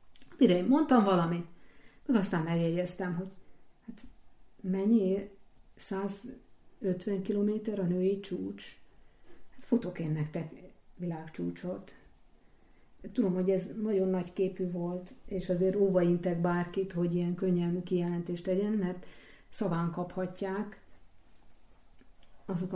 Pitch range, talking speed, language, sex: 170-195 Hz, 105 wpm, Hungarian, female